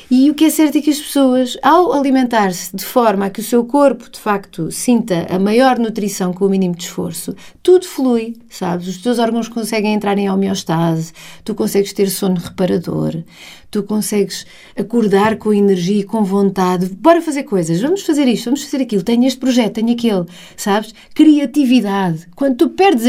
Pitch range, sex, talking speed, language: 195-255 Hz, female, 185 wpm, Portuguese